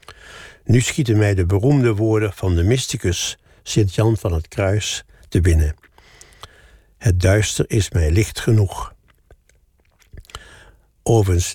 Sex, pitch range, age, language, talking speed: male, 95-120 Hz, 60-79, Dutch, 115 wpm